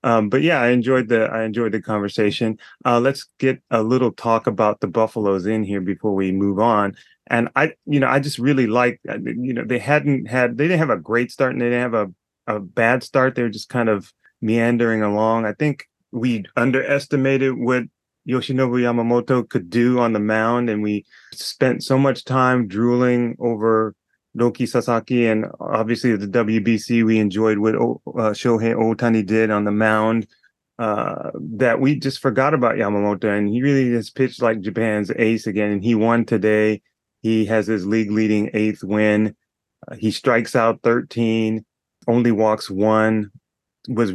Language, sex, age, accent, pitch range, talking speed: English, male, 30-49, American, 110-125 Hz, 180 wpm